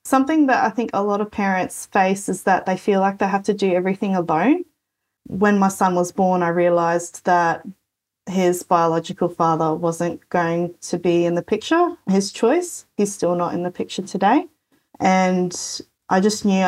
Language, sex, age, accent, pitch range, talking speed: English, female, 20-39, Australian, 175-200 Hz, 185 wpm